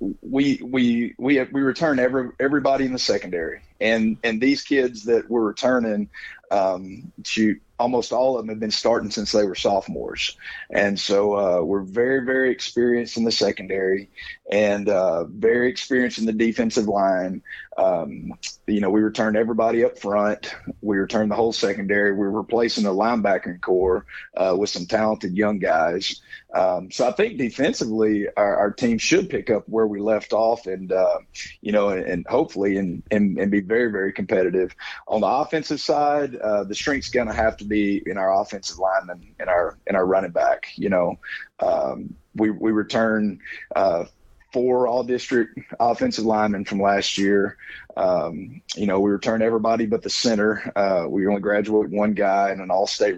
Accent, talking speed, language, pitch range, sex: American, 175 wpm, English, 100-125 Hz, male